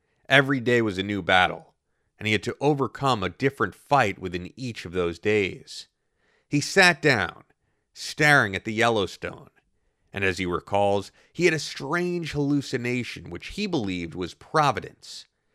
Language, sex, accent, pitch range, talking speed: English, male, American, 95-145 Hz, 155 wpm